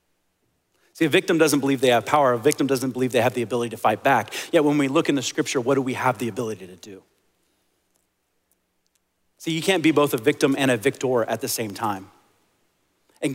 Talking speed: 220 wpm